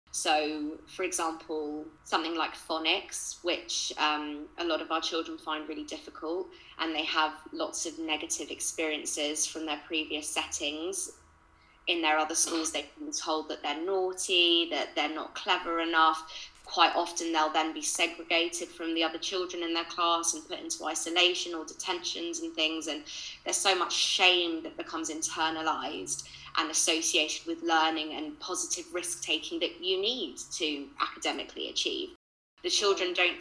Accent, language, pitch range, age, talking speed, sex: British, English, 155-180 Hz, 20-39, 155 wpm, female